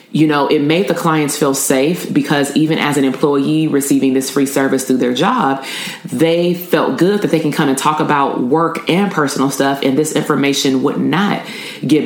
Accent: American